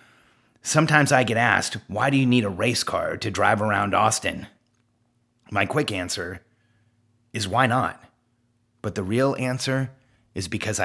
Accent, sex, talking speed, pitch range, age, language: American, male, 150 wpm, 110-130 Hz, 30-49, English